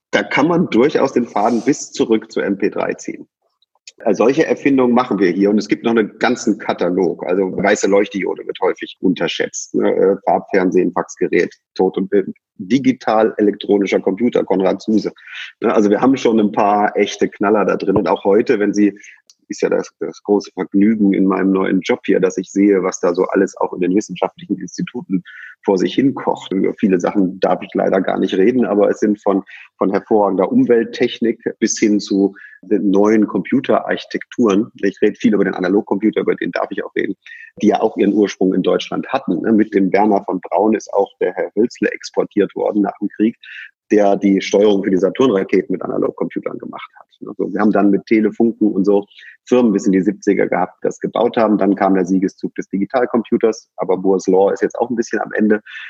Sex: male